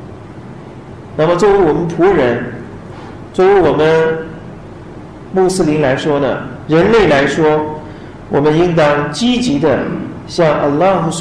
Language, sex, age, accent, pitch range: Chinese, male, 40-59, native, 145-215 Hz